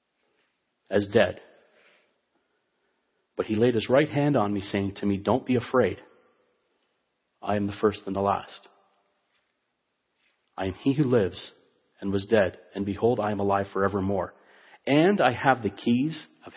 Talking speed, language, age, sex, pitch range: 155 wpm, English, 40-59, male, 105-135 Hz